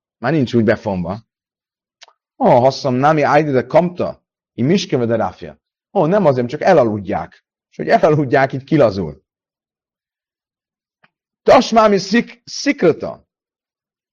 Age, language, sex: 40-59, Hungarian, male